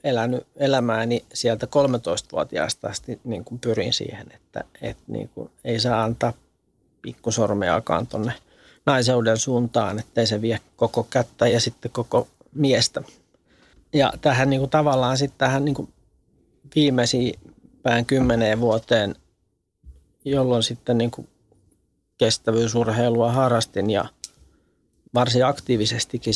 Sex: male